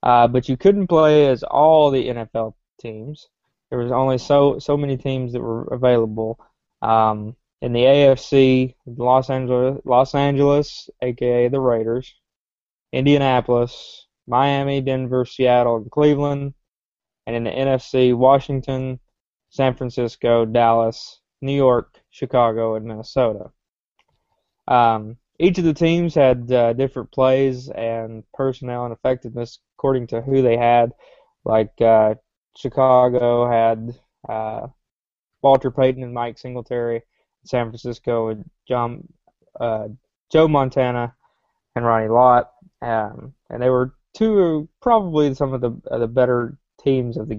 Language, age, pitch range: English, 20-39, 120-135 Hz